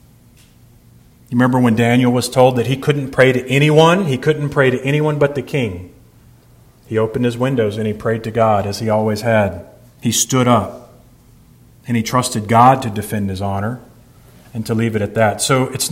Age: 40-59